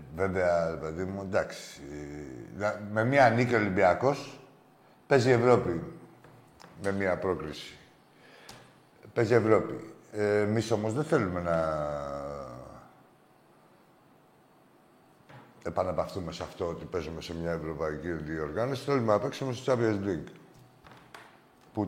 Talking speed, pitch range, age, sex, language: 105 wpm, 90-135 Hz, 60-79, male, Greek